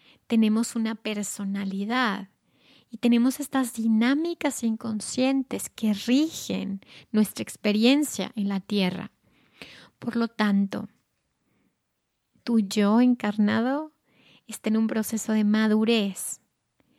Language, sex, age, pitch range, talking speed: Spanish, female, 30-49, 210-250 Hz, 95 wpm